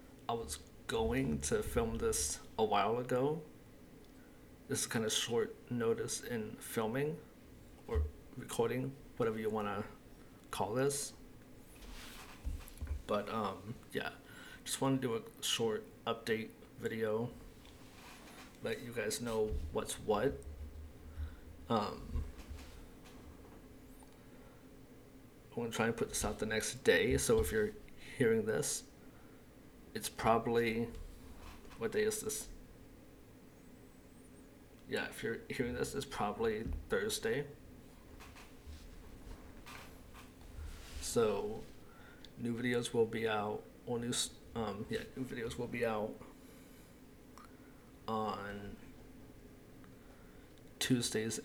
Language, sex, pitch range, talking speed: English, male, 85-125 Hz, 100 wpm